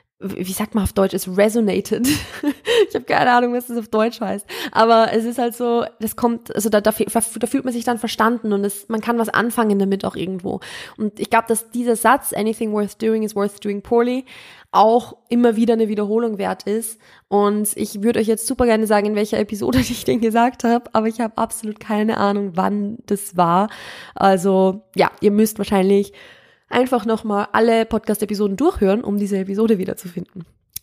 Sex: female